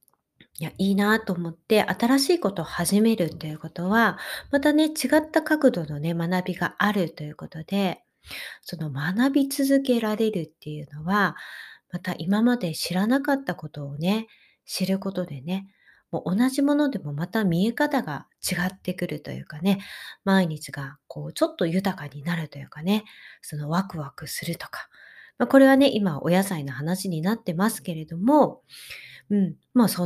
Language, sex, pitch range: Japanese, female, 155-215 Hz